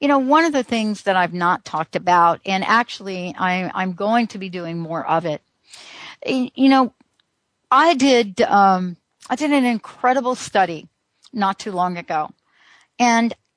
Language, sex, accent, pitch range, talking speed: English, female, American, 180-250 Hz, 155 wpm